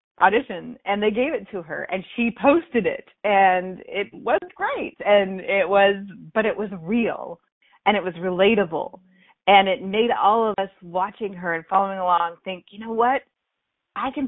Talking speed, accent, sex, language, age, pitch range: 180 wpm, American, female, English, 30-49, 175-220 Hz